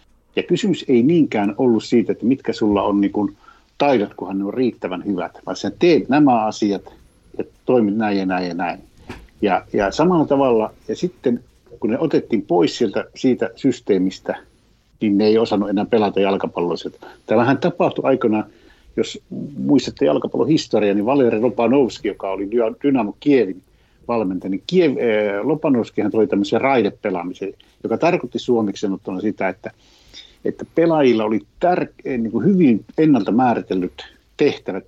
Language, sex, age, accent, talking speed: Finnish, male, 60-79, native, 140 wpm